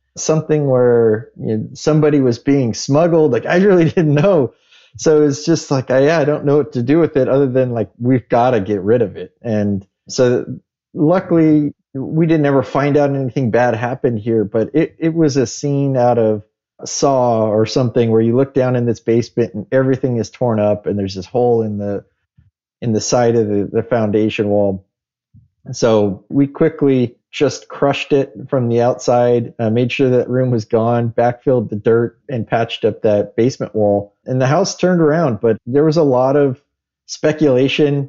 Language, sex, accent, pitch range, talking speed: English, male, American, 115-140 Hz, 195 wpm